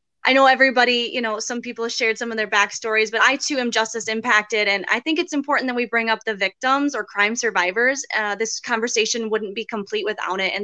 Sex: female